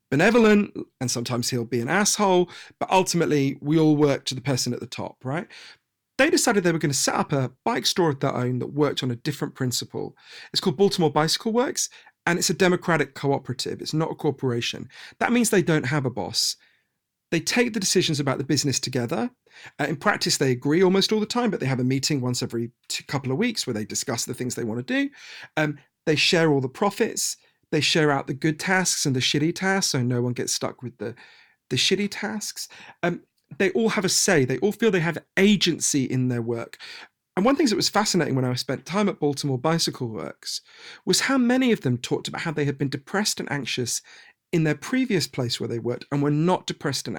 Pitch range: 130-190 Hz